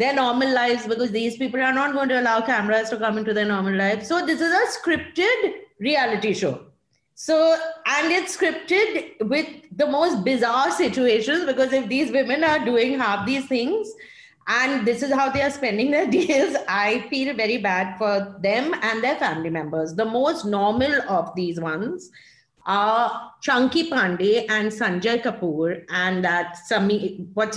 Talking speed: 170 wpm